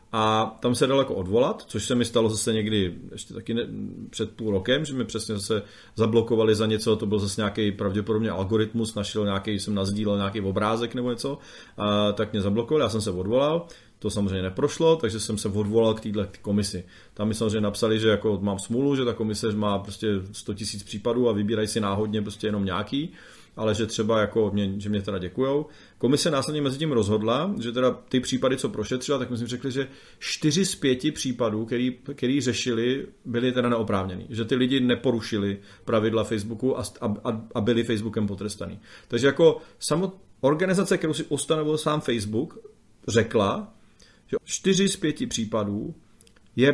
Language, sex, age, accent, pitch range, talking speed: Czech, male, 30-49, native, 105-130 Hz, 185 wpm